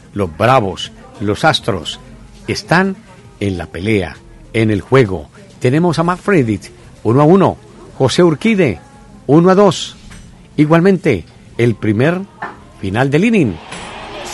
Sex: male